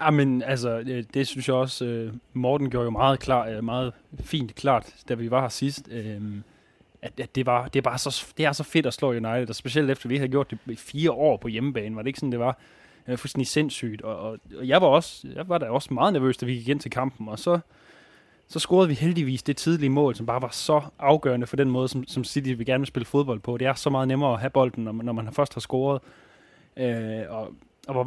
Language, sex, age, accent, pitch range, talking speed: Danish, male, 20-39, native, 120-140 Hz, 250 wpm